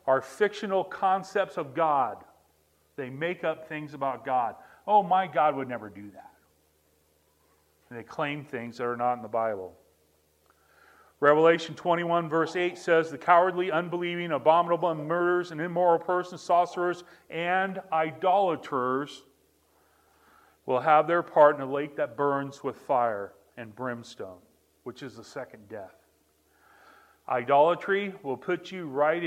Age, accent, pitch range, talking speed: 40-59, American, 120-170 Hz, 135 wpm